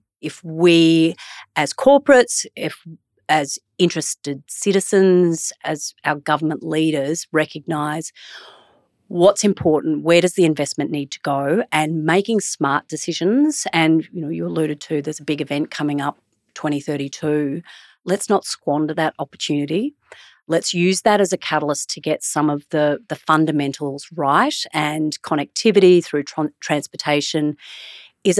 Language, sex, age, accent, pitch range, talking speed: English, female, 40-59, Australian, 150-175 Hz, 135 wpm